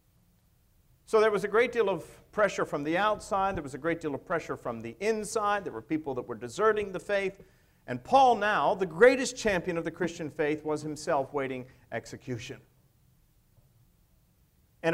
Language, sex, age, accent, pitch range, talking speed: English, male, 50-69, American, 125-180 Hz, 175 wpm